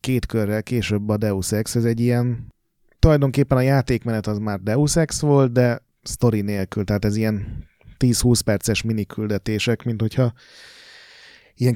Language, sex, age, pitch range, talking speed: Hungarian, male, 30-49, 105-125 Hz, 150 wpm